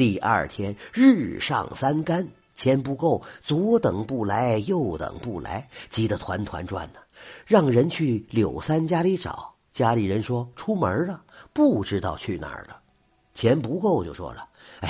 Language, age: Chinese, 50-69